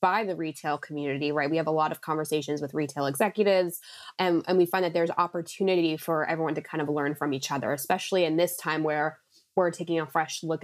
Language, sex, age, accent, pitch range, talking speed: English, female, 20-39, American, 155-185 Hz, 225 wpm